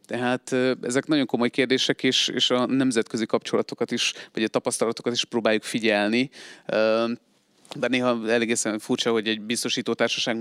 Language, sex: Hungarian, male